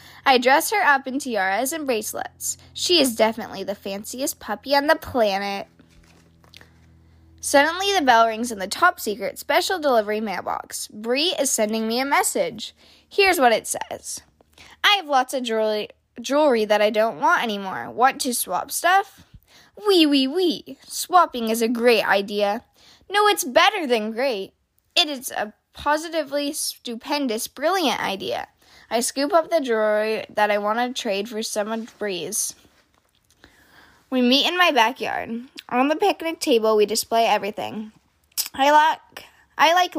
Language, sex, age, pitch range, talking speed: English, female, 10-29, 215-295 Hz, 155 wpm